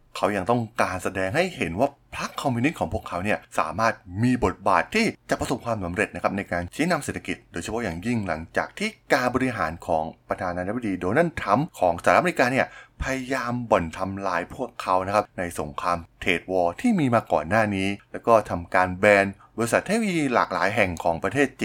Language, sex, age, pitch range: Thai, male, 20-39, 90-120 Hz